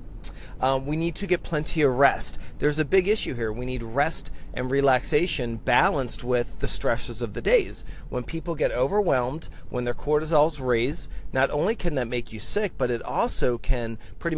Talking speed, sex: 190 wpm, male